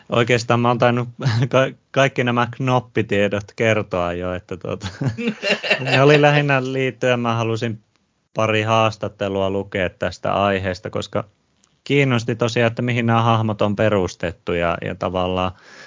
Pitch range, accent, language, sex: 95-115 Hz, native, Finnish, male